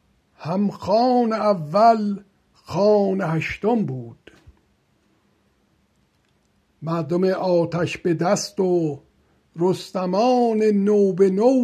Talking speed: 75 wpm